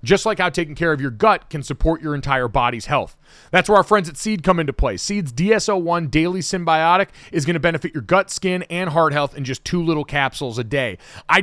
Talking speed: 230 wpm